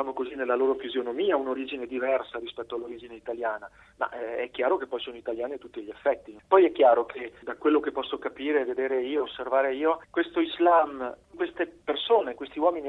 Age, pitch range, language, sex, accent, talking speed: 40-59, 130-175 Hz, Italian, male, native, 175 wpm